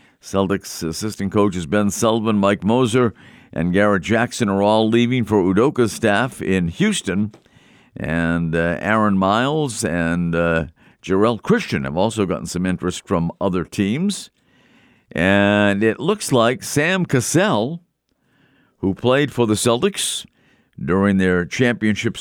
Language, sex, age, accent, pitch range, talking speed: English, male, 50-69, American, 90-125 Hz, 130 wpm